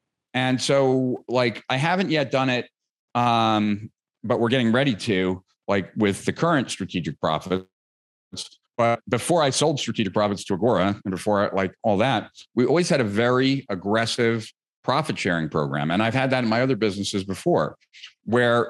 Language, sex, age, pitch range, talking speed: English, male, 40-59, 105-130 Hz, 165 wpm